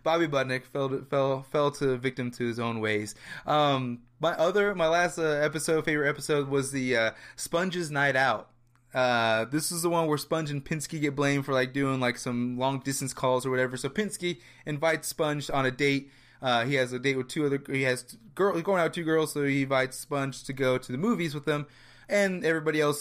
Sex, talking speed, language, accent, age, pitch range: male, 215 wpm, English, American, 20-39, 130-155 Hz